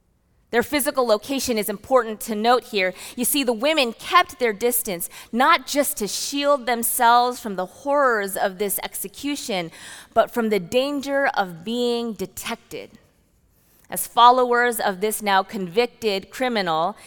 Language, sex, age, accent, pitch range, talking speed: English, female, 20-39, American, 190-255 Hz, 140 wpm